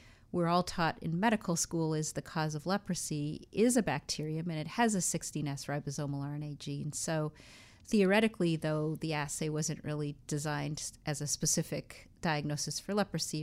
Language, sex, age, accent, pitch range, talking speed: English, female, 40-59, American, 150-180 Hz, 160 wpm